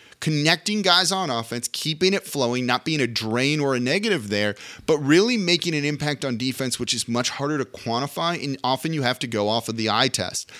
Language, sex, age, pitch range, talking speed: English, male, 30-49, 125-175 Hz, 220 wpm